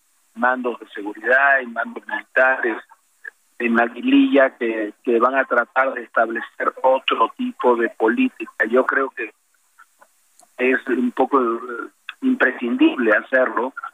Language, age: Spanish, 40-59